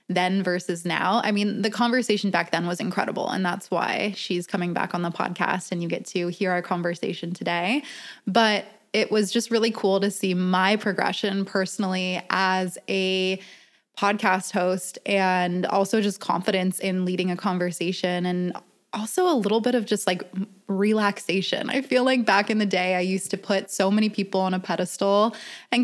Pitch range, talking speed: 185-210 Hz, 180 wpm